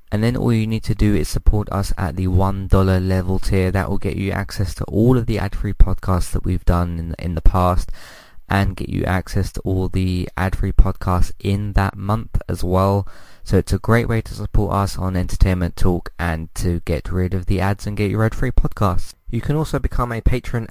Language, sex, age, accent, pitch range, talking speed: English, male, 20-39, British, 95-115 Hz, 215 wpm